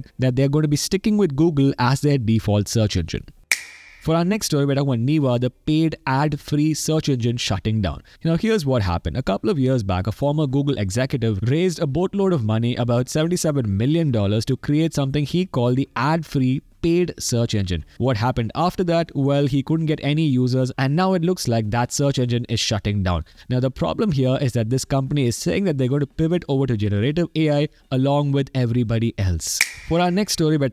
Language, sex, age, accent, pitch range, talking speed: English, male, 20-39, Indian, 110-155 Hz, 215 wpm